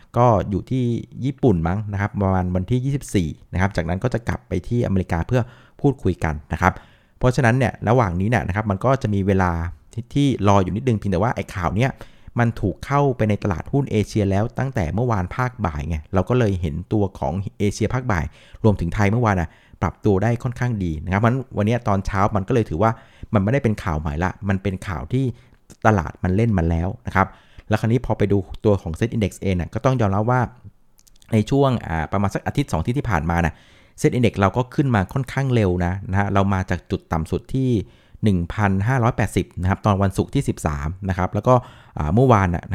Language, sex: Thai, male